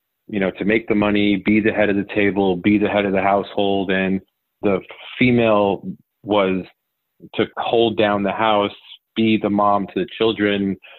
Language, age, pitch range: English, 40-59, 95-115 Hz